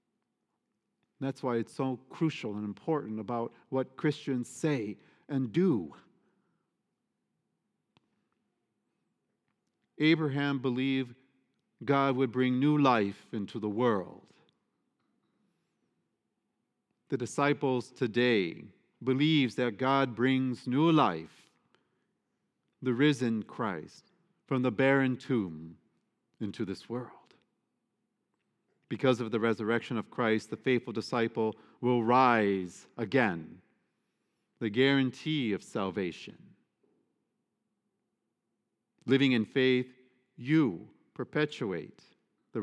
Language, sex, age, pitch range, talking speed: English, male, 50-69, 115-135 Hz, 90 wpm